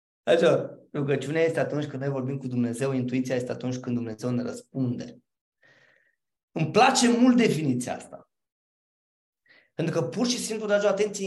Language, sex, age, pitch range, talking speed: Romanian, male, 20-39, 165-245 Hz, 150 wpm